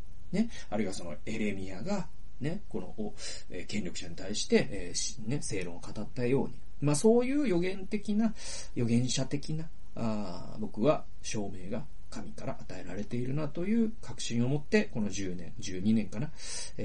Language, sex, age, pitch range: Japanese, male, 40-59, 100-160 Hz